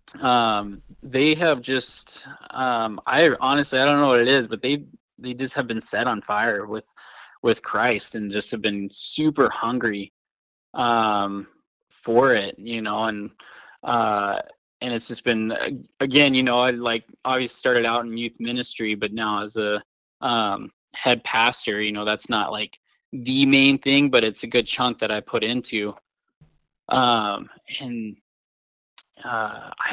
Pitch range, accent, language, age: 110-130 Hz, American, English, 20-39